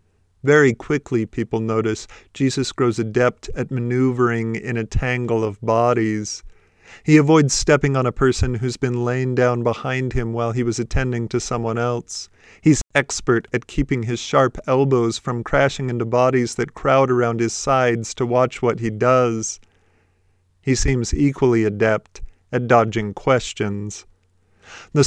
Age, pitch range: 40-59, 110-135 Hz